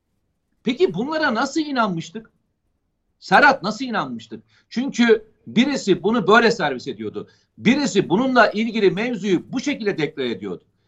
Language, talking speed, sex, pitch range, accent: Turkish, 115 wpm, male, 195-265 Hz, native